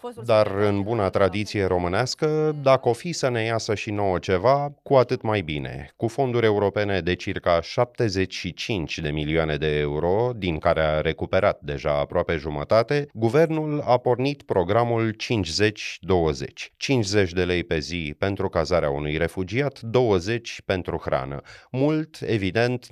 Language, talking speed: Romanian, 140 wpm